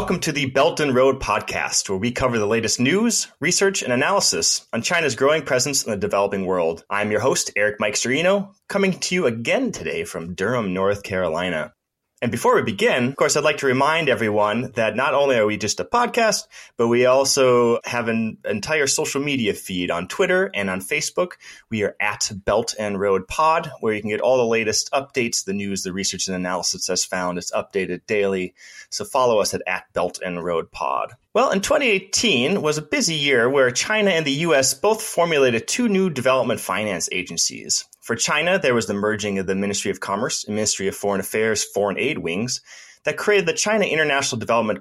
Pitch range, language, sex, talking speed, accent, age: 105-155 Hz, English, male, 200 wpm, American, 30-49